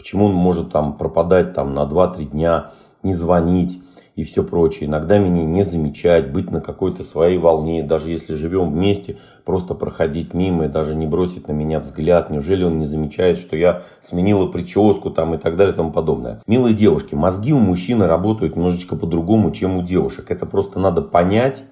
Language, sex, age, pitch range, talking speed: Russian, male, 30-49, 85-105 Hz, 185 wpm